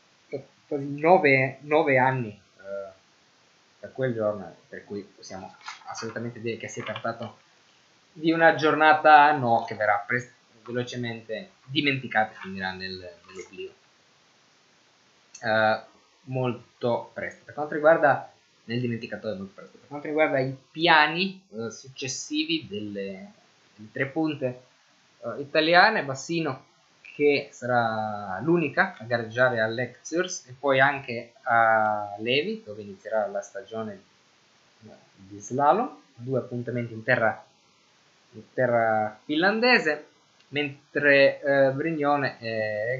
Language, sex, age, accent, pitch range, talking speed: Italian, male, 20-39, native, 110-145 Hz, 115 wpm